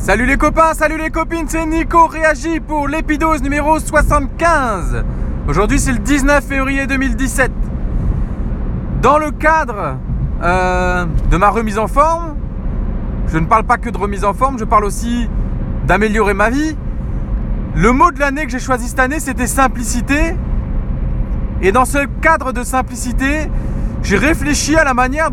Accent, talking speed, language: French, 155 wpm, French